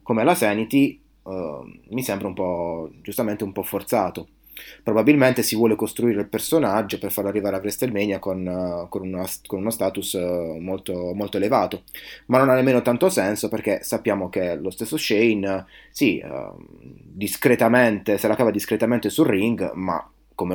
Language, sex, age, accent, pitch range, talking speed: Italian, male, 20-39, native, 95-120 Hz, 165 wpm